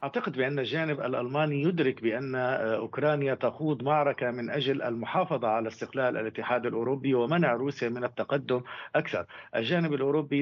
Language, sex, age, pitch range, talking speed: Arabic, male, 50-69, 125-145 Hz, 130 wpm